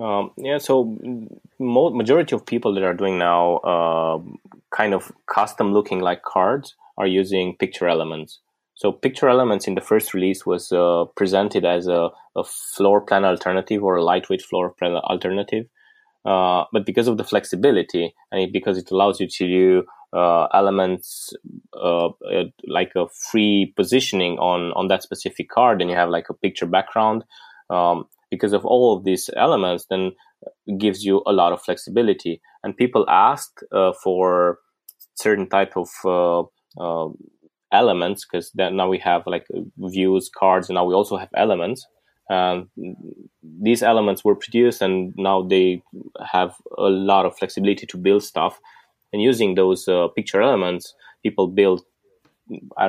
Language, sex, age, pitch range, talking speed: English, male, 20-39, 90-100 Hz, 155 wpm